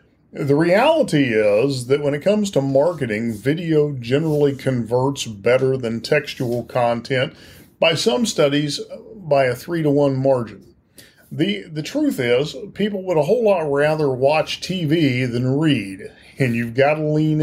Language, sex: English, male